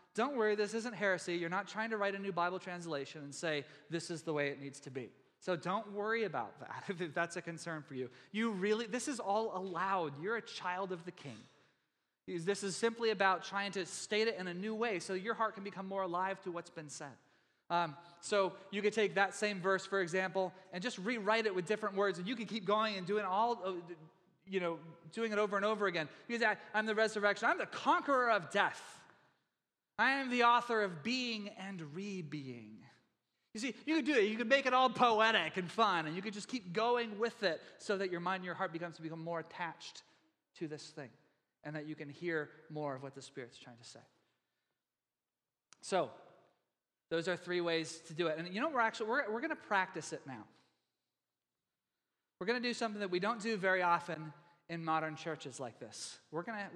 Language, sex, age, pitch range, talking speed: English, male, 20-39, 165-215 Hz, 215 wpm